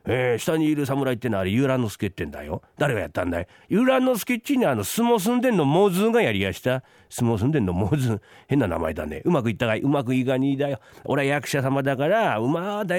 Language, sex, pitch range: Japanese, male, 135-200 Hz